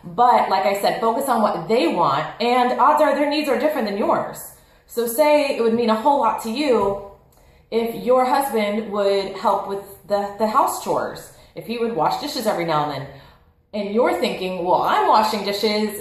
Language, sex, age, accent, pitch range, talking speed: English, female, 30-49, American, 190-240 Hz, 200 wpm